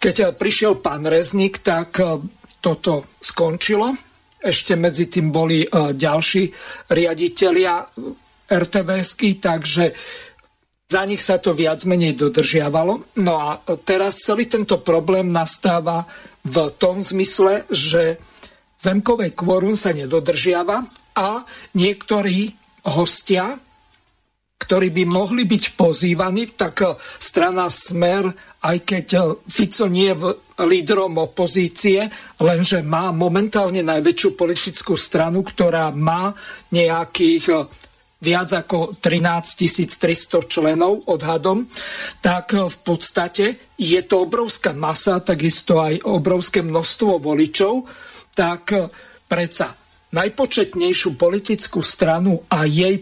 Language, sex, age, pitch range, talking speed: Slovak, male, 50-69, 170-205 Hz, 100 wpm